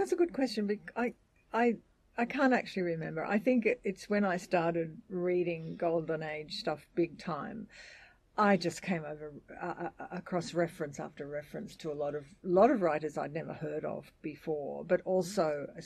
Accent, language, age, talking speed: Australian, English, 50-69, 180 wpm